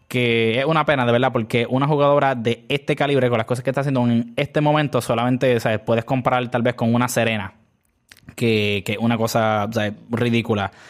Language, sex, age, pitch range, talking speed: Spanish, male, 20-39, 120-160 Hz, 185 wpm